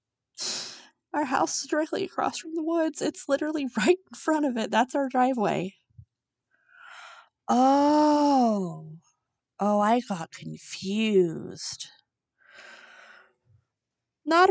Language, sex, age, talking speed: English, female, 30-49, 100 wpm